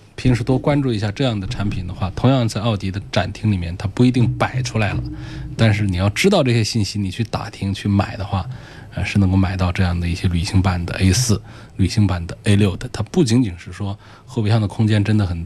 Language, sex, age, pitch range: Chinese, male, 20-39, 95-120 Hz